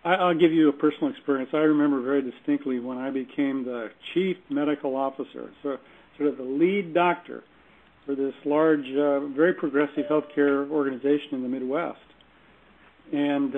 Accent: American